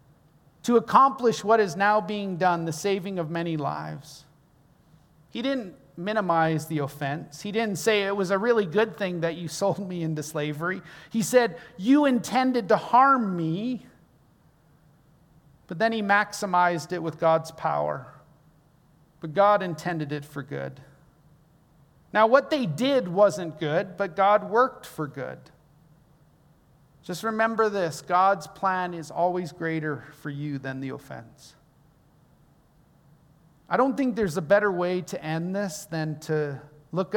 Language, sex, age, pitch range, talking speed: English, male, 40-59, 150-200 Hz, 145 wpm